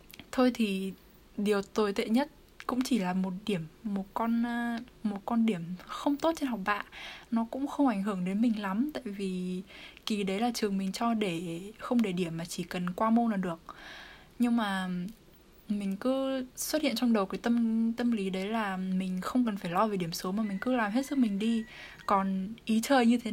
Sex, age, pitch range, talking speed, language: female, 10-29, 190-240 Hz, 215 wpm, Vietnamese